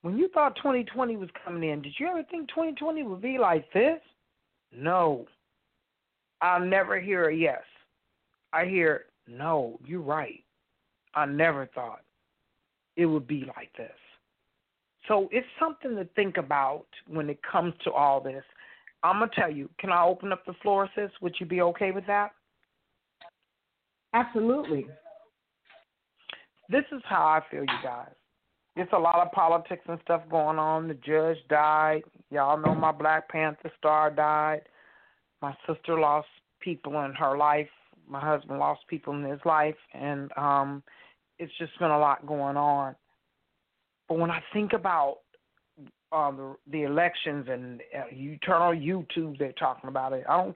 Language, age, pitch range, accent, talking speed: English, 50-69, 145-190 Hz, American, 160 wpm